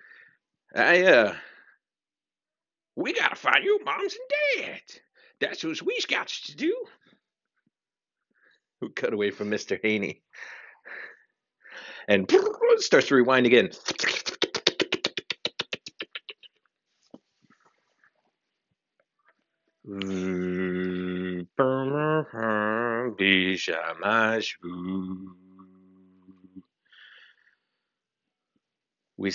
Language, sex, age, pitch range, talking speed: English, male, 50-69, 95-120 Hz, 55 wpm